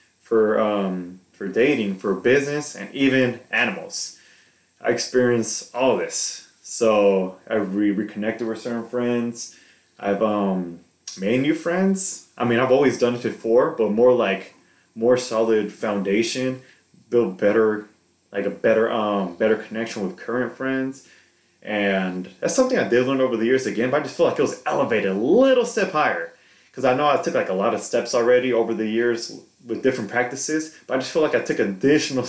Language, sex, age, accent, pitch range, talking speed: English, male, 20-39, American, 100-125 Hz, 180 wpm